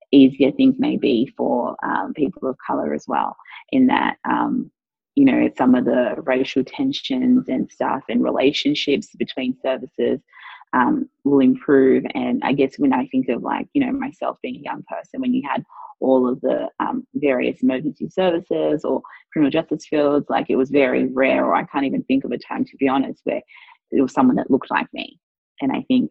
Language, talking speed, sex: English, 200 wpm, female